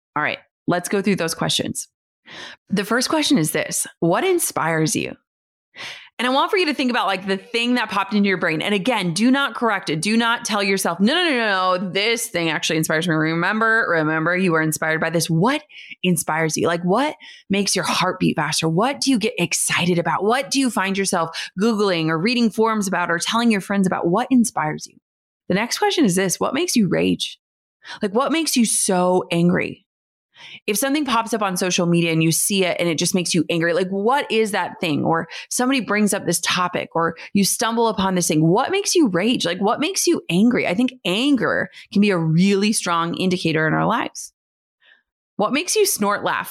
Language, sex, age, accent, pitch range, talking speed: English, female, 20-39, American, 170-235 Hz, 215 wpm